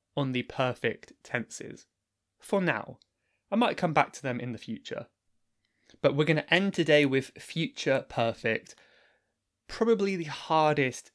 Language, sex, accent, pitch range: English, male, British, 125-165 Hz